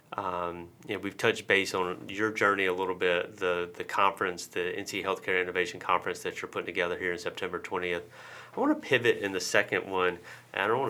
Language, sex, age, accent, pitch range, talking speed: English, male, 30-49, American, 90-150 Hz, 215 wpm